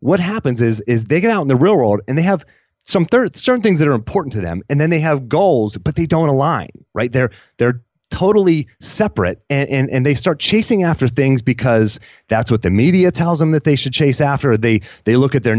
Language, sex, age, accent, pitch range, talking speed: English, male, 30-49, American, 115-150 Hz, 240 wpm